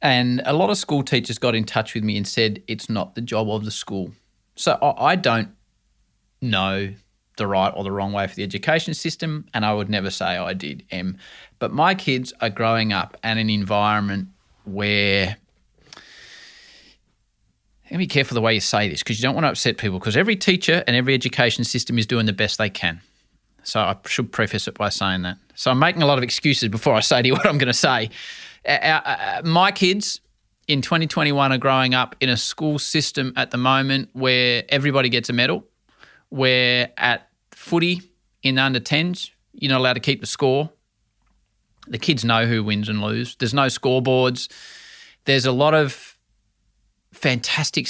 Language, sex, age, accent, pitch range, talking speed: English, male, 20-39, Australian, 110-140 Hz, 195 wpm